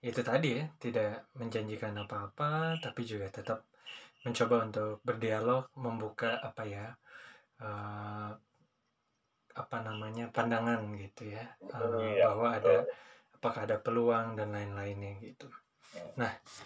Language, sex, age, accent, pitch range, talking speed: Indonesian, male, 20-39, native, 110-125 Hz, 105 wpm